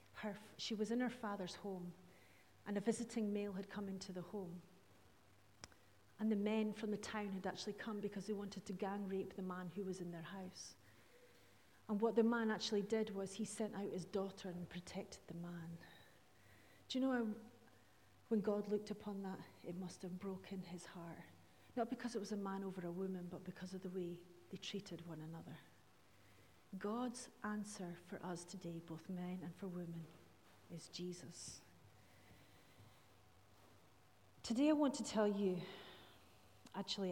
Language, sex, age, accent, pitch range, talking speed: English, female, 40-59, British, 175-215 Hz, 170 wpm